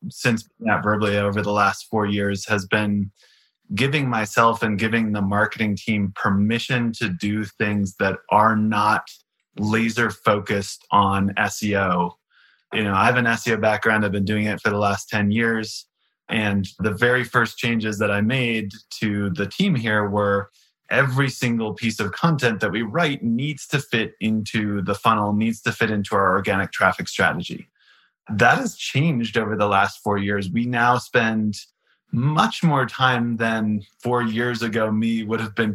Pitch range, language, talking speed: 105-115 Hz, English, 170 wpm